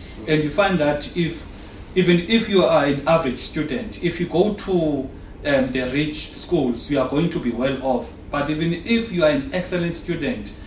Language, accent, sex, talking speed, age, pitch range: English, South African, male, 195 wpm, 40-59, 140-175 Hz